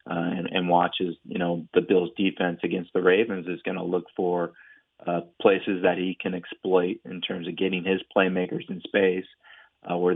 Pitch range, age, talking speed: 90-100 Hz, 30-49, 185 wpm